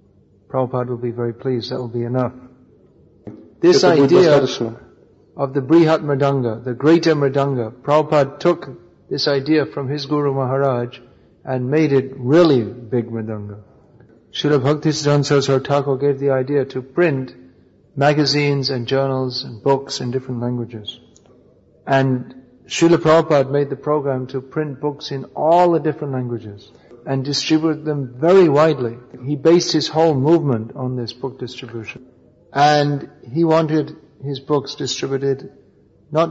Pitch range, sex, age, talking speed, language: 125-145 Hz, male, 50-69, 135 wpm, English